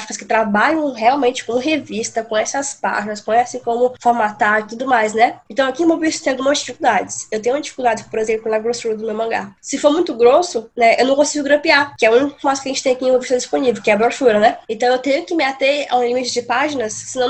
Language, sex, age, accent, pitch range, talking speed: Portuguese, female, 10-29, Brazilian, 225-275 Hz, 245 wpm